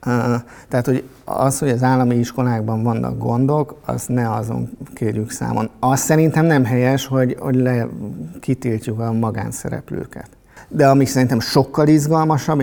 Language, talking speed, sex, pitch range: Hungarian, 140 wpm, male, 115-140 Hz